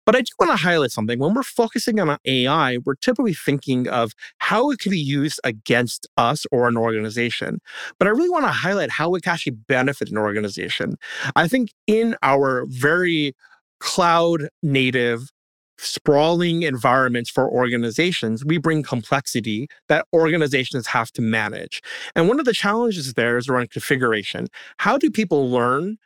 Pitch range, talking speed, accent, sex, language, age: 125-180 Hz, 160 wpm, American, male, English, 30-49